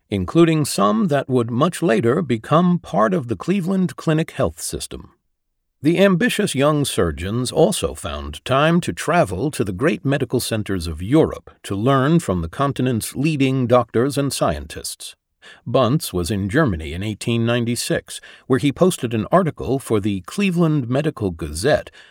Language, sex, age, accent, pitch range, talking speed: English, male, 60-79, American, 105-155 Hz, 150 wpm